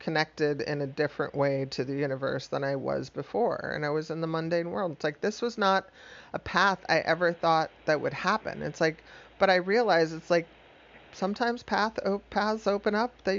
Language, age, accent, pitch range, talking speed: English, 40-59, American, 150-200 Hz, 205 wpm